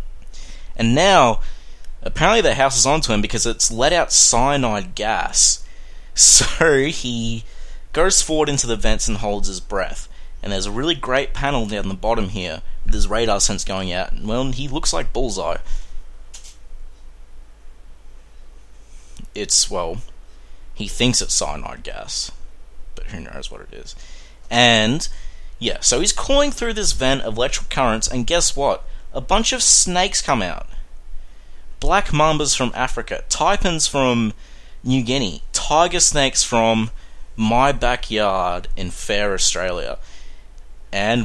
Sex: male